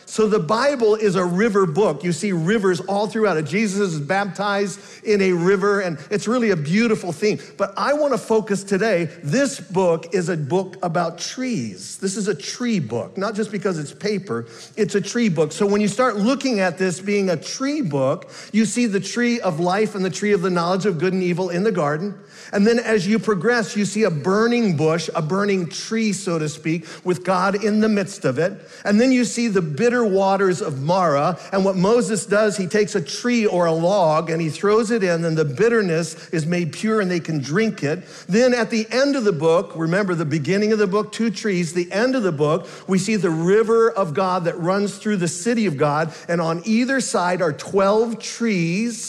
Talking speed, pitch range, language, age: 220 wpm, 175-220 Hz, English, 50-69